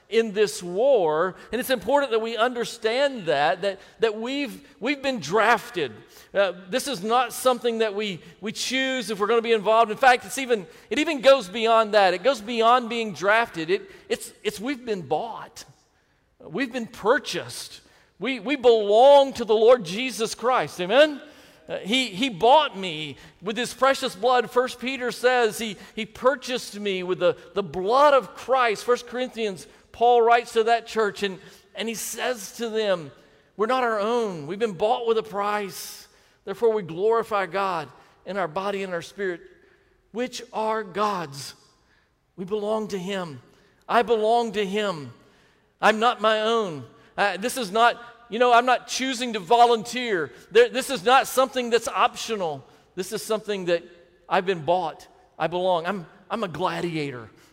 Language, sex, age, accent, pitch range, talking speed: English, male, 40-59, American, 195-245 Hz, 170 wpm